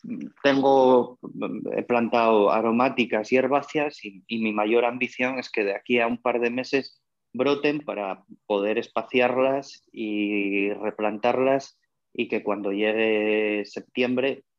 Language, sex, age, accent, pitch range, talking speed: Spanish, male, 30-49, Spanish, 110-130 Hz, 130 wpm